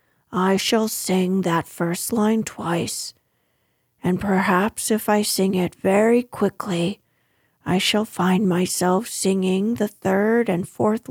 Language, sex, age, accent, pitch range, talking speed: English, female, 40-59, American, 185-220 Hz, 130 wpm